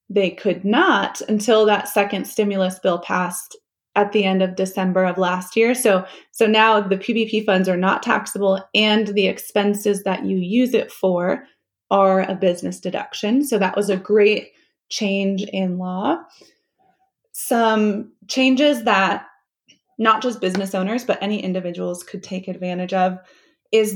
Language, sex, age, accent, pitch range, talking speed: English, female, 20-39, American, 190-230 Hz, 155 wpm